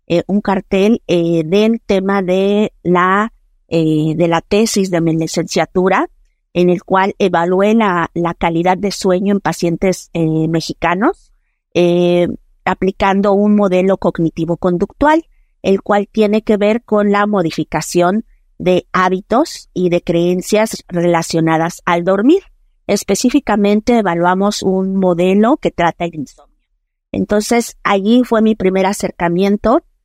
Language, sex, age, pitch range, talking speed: Spanish, female, 50-69, 170-205 Hz, 125 wpm